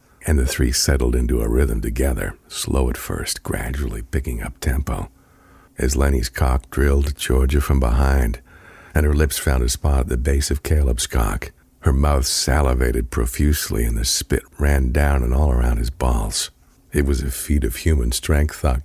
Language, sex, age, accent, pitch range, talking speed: English, male, 60-79, American, 65-75 Hz, 180 wpm